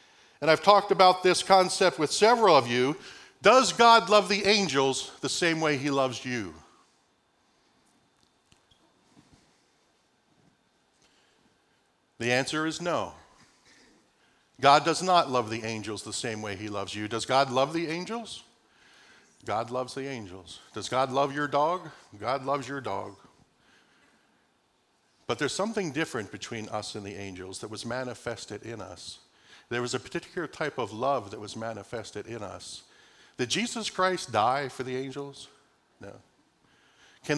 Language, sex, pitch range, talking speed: English, male, 120-175 Hz, 145 wpm